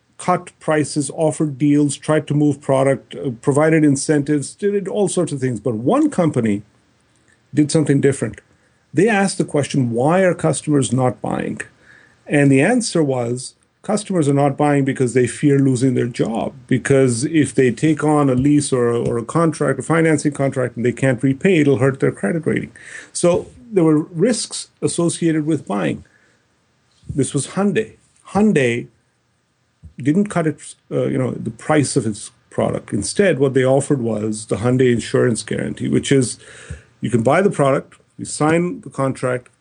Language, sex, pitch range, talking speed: English, male, 125-160 Hz, 165 wpm